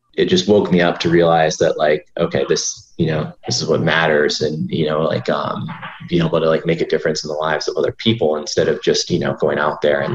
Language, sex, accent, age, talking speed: English, male, American, 20-39, 260 wpm